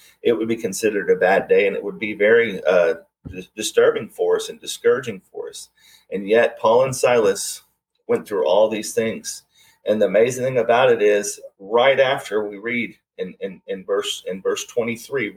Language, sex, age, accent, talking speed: English, male, 30-49, American, 175 wpm